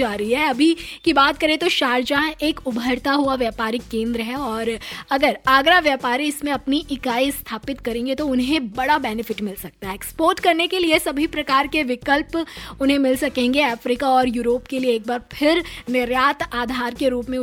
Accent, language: native, Hindi